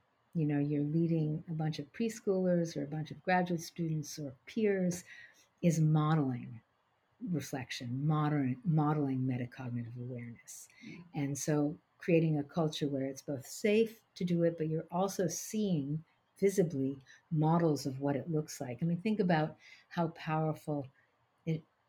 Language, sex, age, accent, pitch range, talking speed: English, female, 50-69, American, 145-165 Hz, 145 wpm